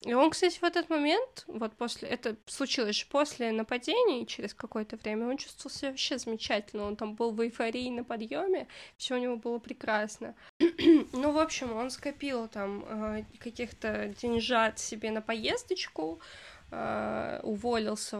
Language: Russian